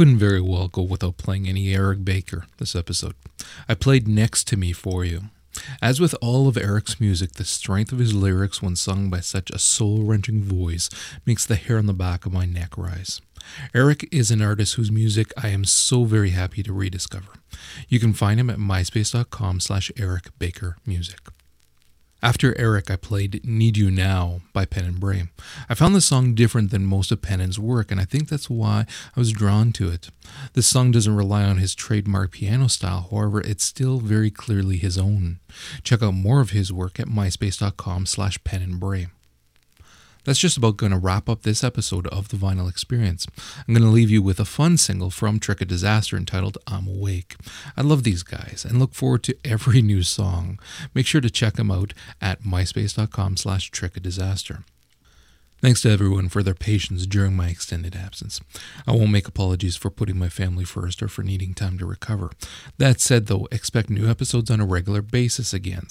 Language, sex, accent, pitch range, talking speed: English, male, American, 95-115 Hz, 195 wpm